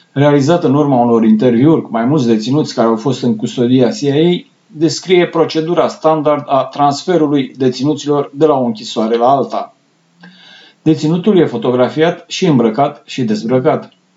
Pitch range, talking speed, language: 125-160 Hz, 145 wpm, Romanian